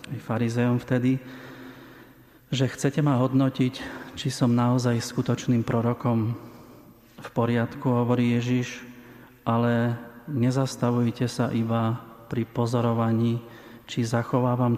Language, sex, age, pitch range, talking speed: Slovak, male, 30-49, 115-125 Hz, 95 wpm